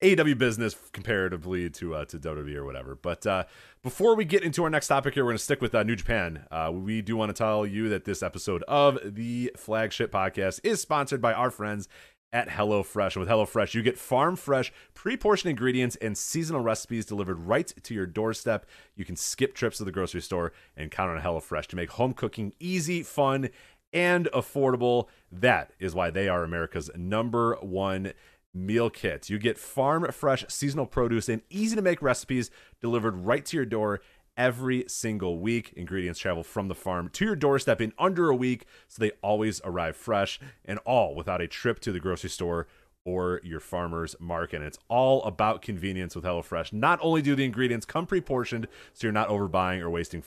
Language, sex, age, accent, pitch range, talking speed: English, male, 30-49, American, 90-130 Hz, 190 wpm